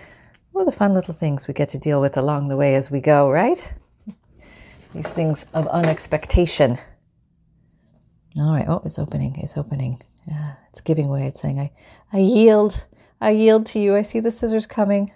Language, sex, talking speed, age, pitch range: English, female, 180 wpm, 40-59, 140-200 Hz